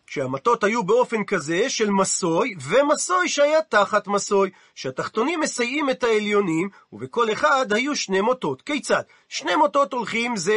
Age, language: 40-59, Hebrew